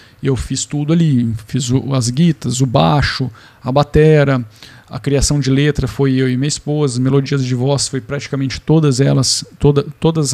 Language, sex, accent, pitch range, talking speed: Portuguese, male, Brazilian, 130-160 Hz, 170 wpm